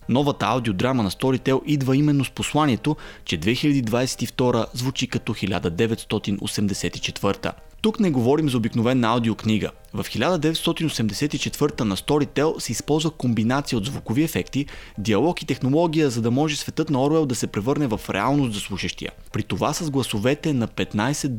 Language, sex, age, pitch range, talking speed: Bulgarian, male, 30-49, 110-145 Hz, 145 wpm